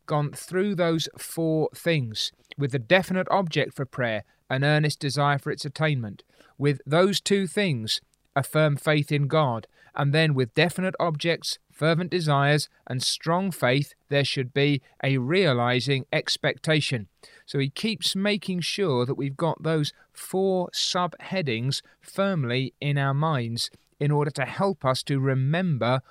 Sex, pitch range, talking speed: male, 135-175 Hz, 145 wpm